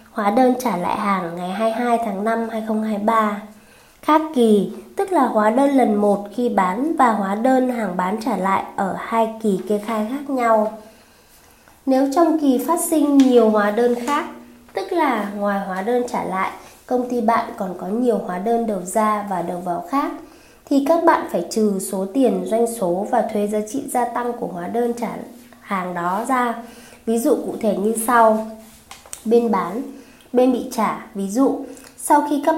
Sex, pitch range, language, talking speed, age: female, 210-255 Hz, Vietnamese, 190 wpm, 20-39